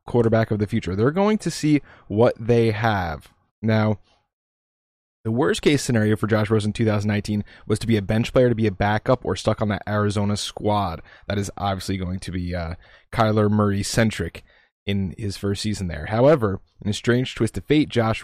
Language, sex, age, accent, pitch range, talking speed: English, male, 20-39, American, 105-120 Hz, 195 wpm